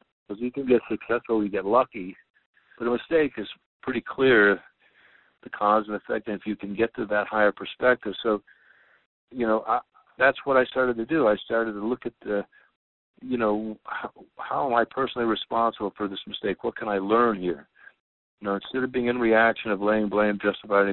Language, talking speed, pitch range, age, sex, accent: English, 200 wpm, 100-115 Hz, 60-79, male, American